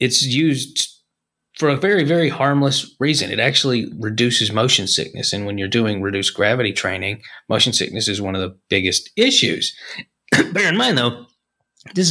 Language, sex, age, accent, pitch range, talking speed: English, male, 30-49, American, 110-145 Hz, 165 wpm